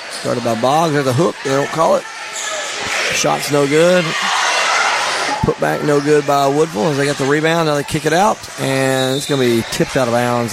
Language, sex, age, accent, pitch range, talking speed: English, male, 30-49, American, 125-155 Hz, 215 wpm